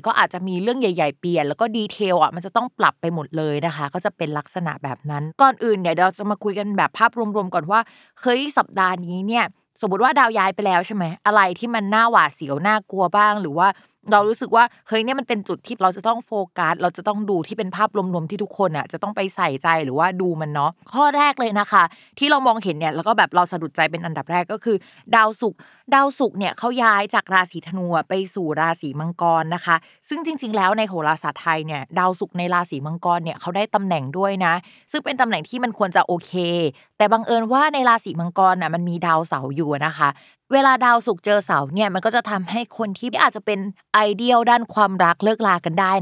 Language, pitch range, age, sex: Thai, 170-225 Hz, 20-39, female